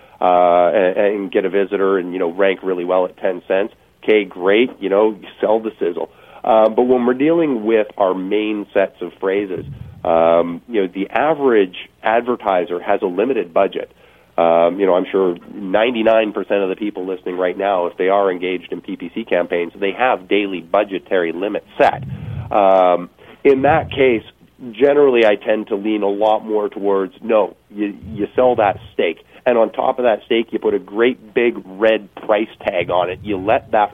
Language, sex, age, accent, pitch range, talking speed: English, male, 40-59, American, 95-115 Hz, 190 wpm